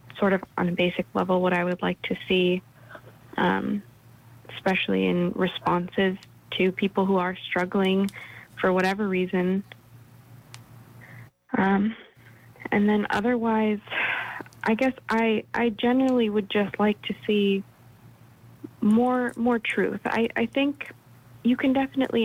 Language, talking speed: English, 125 wpm